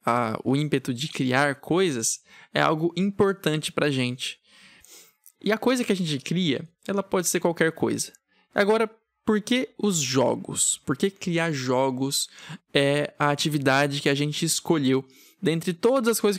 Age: 20-39